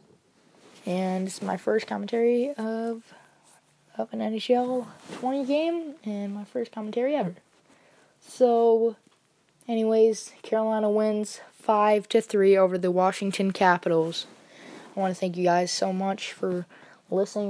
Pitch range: 185-225 Hz